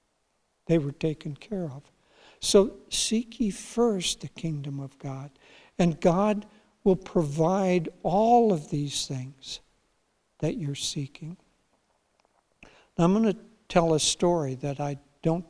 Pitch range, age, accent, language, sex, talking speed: 150-180 Hz, 60-79, American, English, male, 130 wpm